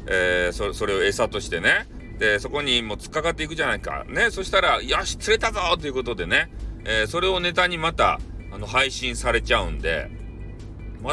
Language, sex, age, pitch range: Japanese, male, 40-59, 105-170 Hz